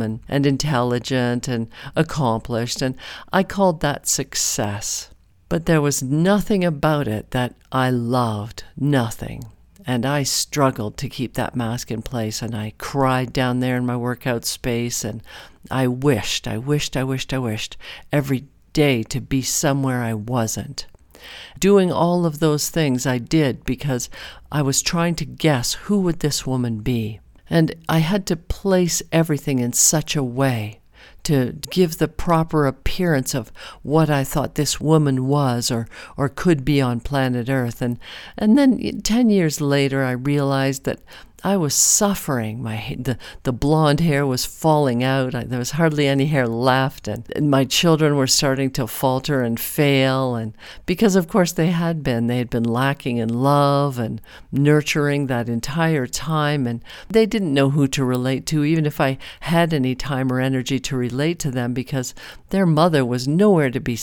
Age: 50-69